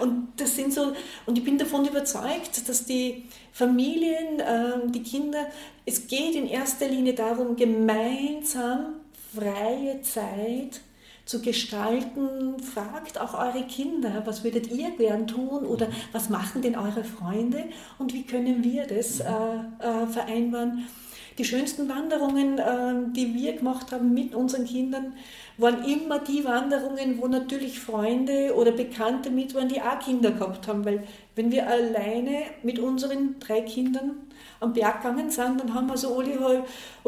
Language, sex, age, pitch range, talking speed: German, female, 40-59, 235-275 Hz, 140 wpm